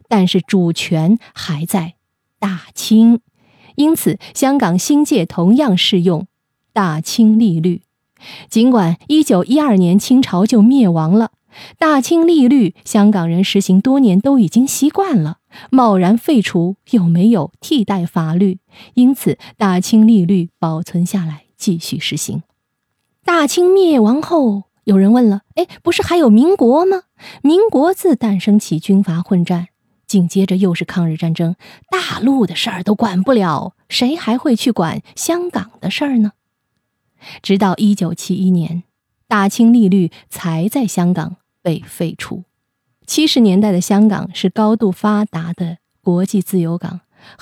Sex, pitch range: female, 175-235 Hz